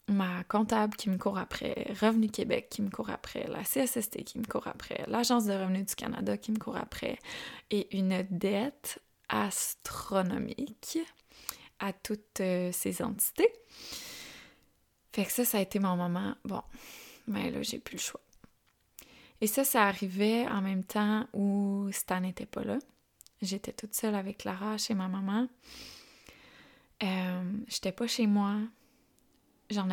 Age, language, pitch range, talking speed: 20-39, French, 195-230 Hz, 150 wpm